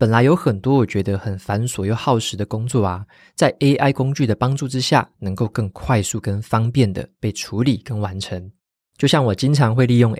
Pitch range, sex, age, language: 100-125 Hz, male, 20-39, Chinese